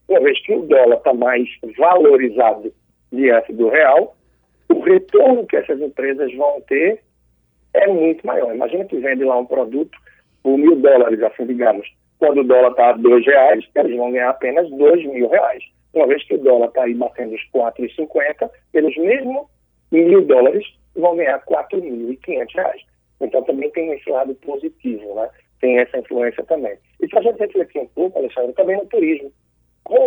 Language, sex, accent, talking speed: Portuguese, male, Brazilian, 185 wpm